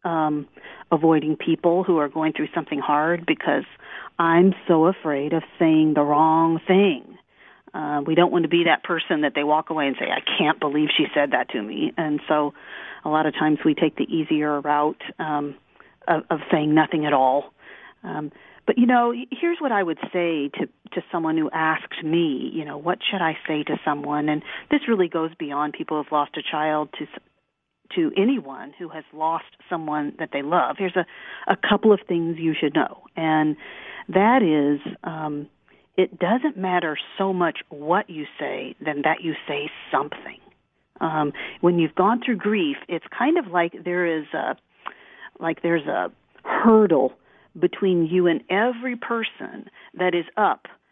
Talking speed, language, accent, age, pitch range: 180 wpm, English, American, 40-59, 150-180 Hz